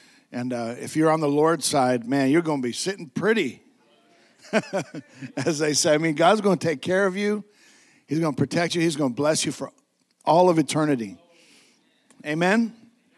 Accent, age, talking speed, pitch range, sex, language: American, 60-79, 190 wpm, 135-175 Hz, male, English